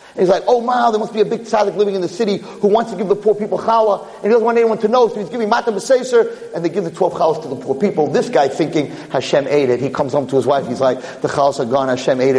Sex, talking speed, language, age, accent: male, 315 wpm, English, 40-59, American